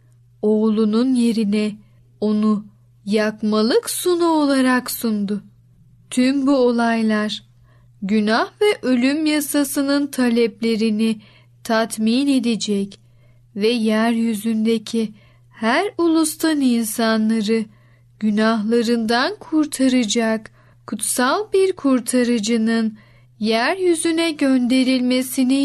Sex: female